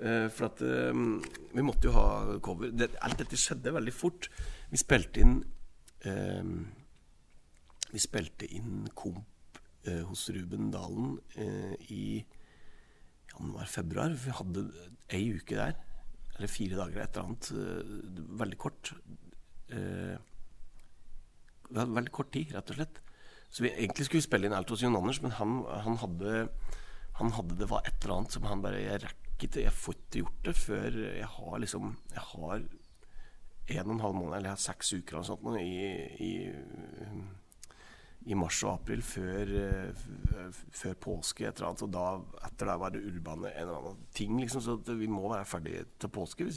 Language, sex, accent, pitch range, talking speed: English, male, Swedish, 85-110 Hz, 175 wpm